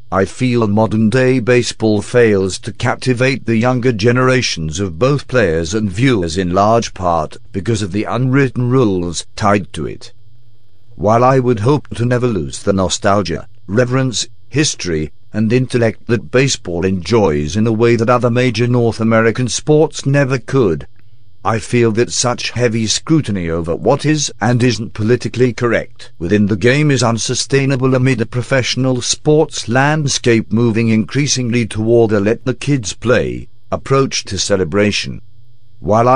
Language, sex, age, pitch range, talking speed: English, male, 50-69, 110-125 Hz, 145 wpm